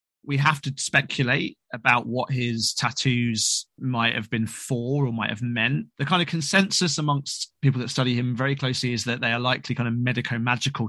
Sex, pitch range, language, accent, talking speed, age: male, 120-145 Hz, English, British, 195 wpm, 20-39